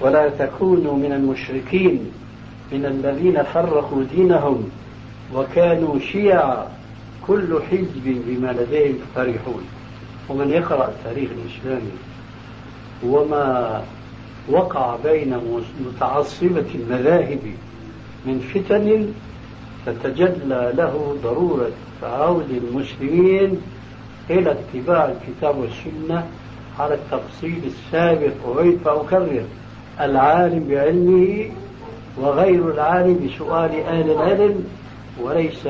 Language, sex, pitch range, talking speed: Arabic, male, 120-160 Hz, 80 wpm